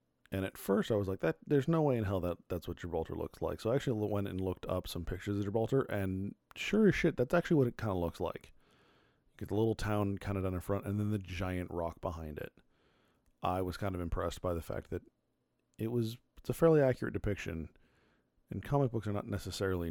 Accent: American